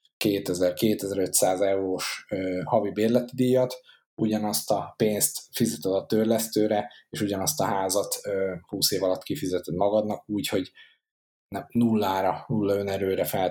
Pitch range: 90-115 Hz